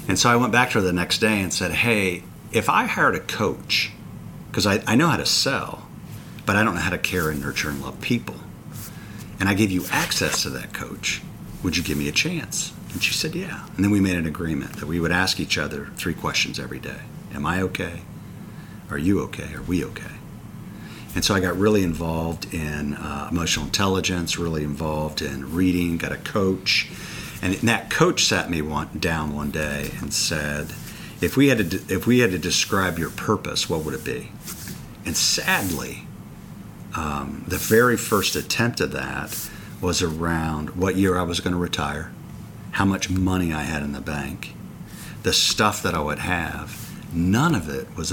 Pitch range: 80-95 Hz